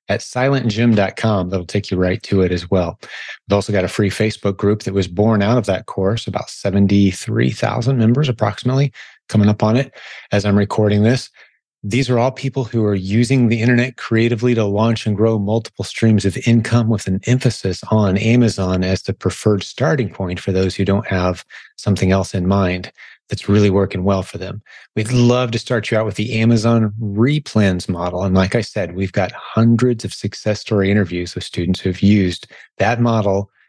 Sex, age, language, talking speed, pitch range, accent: male, 30-49, English, 190 wpm, 95-120 Hz, American